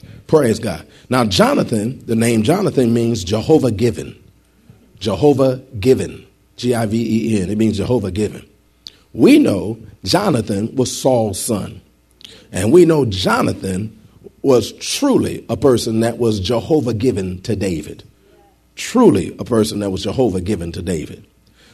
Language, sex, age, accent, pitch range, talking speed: English, male, 40-59, American, 100-135 Hz, 125 wpm